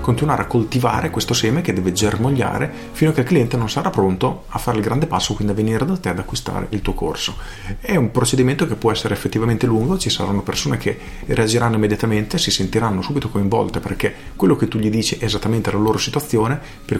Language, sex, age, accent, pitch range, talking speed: Italian, male, 40-59, native, 95-120 Hz, 215 wpm